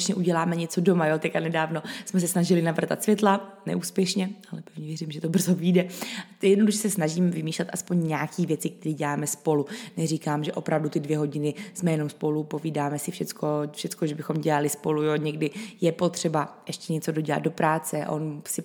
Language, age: Czech, 20-39